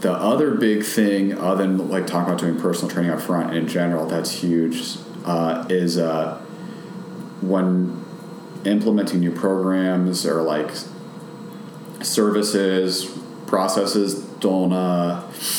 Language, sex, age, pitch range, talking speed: English, male, 30-49, 85-100 Hz, 120 wpm